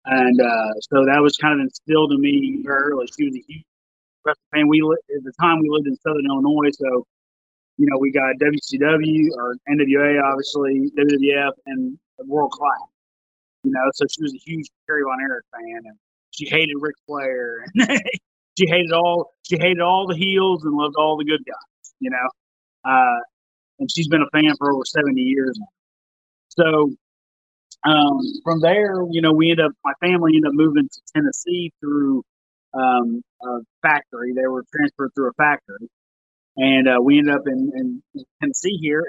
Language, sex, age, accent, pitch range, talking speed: English, male, 30-49, American, 135-175 Hz, 185 wpm